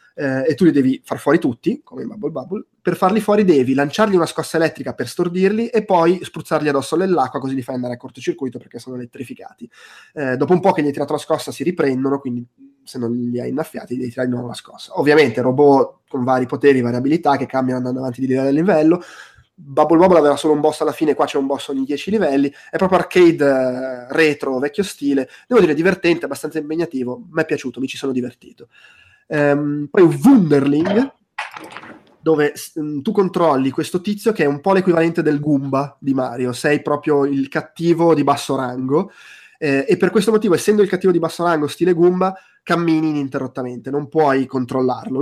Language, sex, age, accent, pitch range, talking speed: Italian, male, 20-39, native, 130-170 Hz, 195 wpm